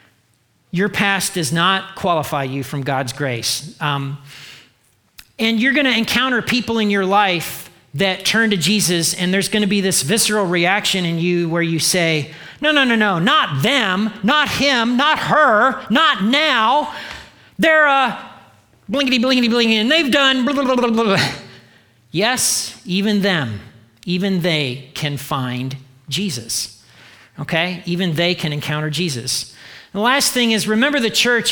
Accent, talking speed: American, 150 wpm